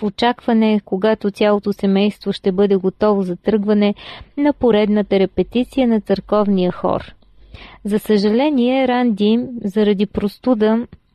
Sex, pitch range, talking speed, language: female, 200-250 Hz, 110 wpm, Bulgarian